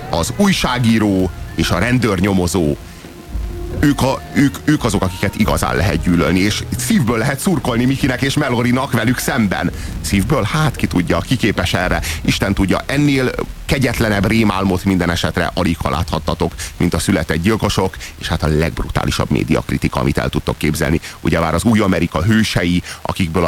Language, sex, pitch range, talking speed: Hungarian, male, 85-115 Hz, 150 wpm